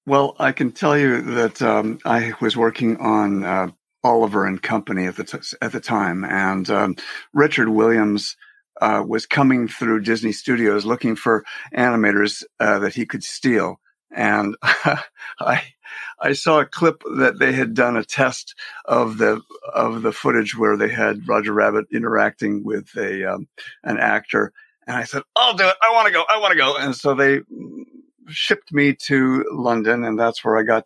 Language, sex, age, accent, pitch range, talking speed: English, male, 50-69, American, 115-155 Hz, 185 wpm